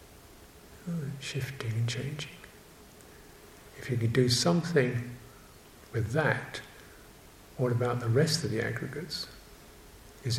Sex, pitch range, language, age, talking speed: male, 120-155 Hz, English, 50-69, 105 wpm